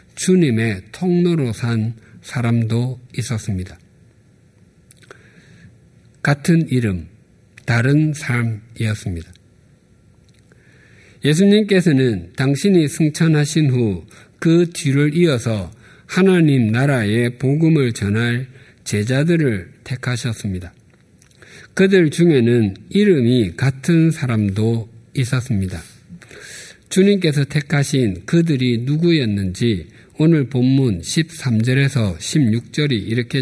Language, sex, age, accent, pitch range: Korean, male, 50-69, native, 105-145 Hz